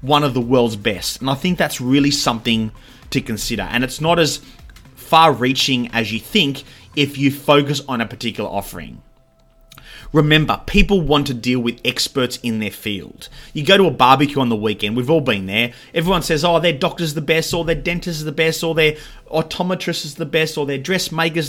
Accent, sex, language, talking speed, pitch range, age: Australian, male, English, 200 wpm, 110-150 Hz, 30-49